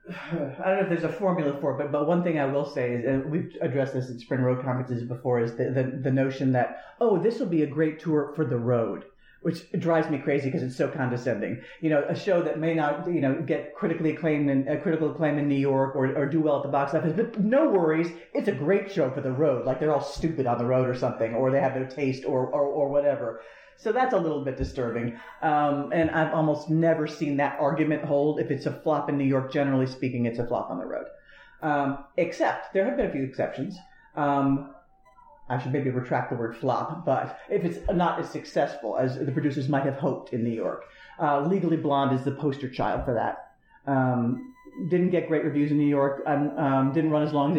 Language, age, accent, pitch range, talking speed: English, 50-69, American, 135-160 Hz, 240 wpm